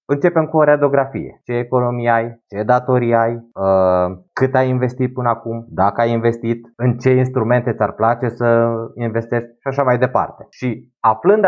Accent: native